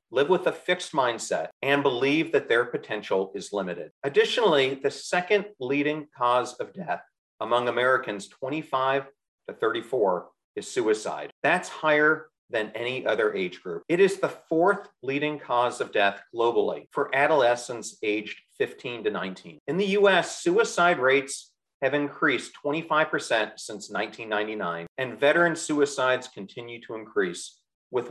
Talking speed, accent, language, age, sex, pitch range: 135 wpm, American, English, 40-59, male, 120-185 Hz